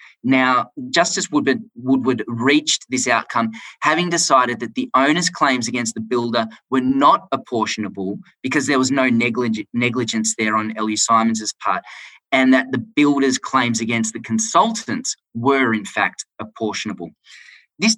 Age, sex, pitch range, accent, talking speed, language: 20-39, male, 115-145 Hz, Australian, 135 wpm, English